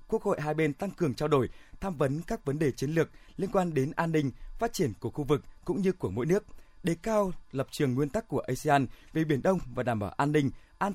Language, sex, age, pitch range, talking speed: Vietnamese, male, 20-39, 130-180 Hz, 260 wpm